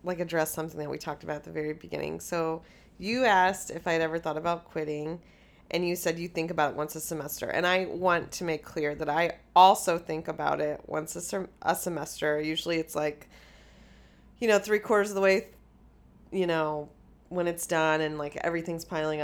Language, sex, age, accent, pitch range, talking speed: English, female, 30-49, American, 155-180 Hz, 205 wpm